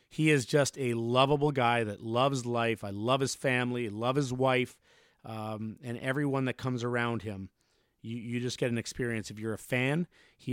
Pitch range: 115-140 Hz